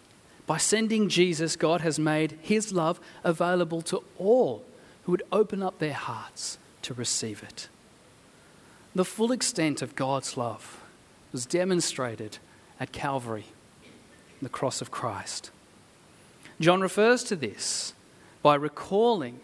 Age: 40-59